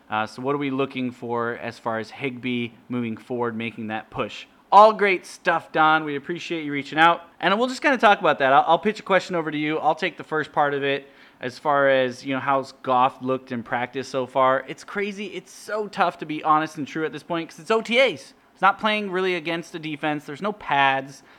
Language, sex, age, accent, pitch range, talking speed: English, male, 30-49, American, 125-155 Hz, 240 wpm